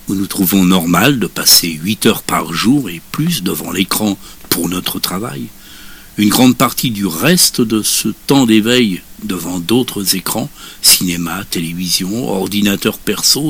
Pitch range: 85-105 Hz